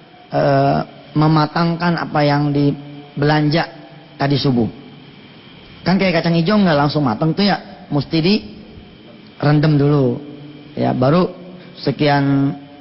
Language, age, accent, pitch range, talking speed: English, 30-49, Indonesian, 145-220 Hz, 105 wpm